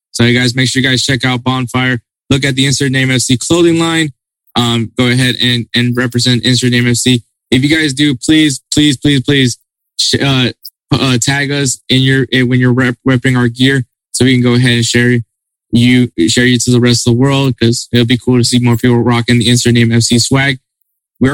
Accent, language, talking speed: American, English, 220 wpm